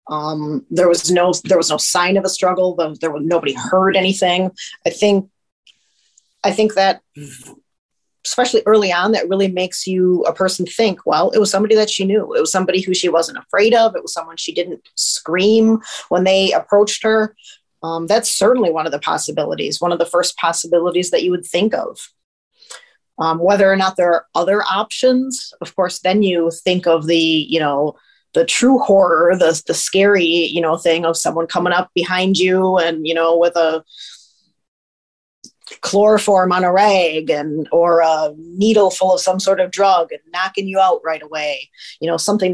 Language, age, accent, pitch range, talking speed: English, 40-59, American, 165-195 Hz, 190 wpm